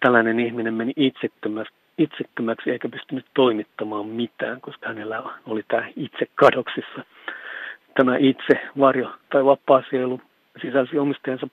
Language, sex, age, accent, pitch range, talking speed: Finnish, male, 50-69, native, 120-135 Hz, 115 wpm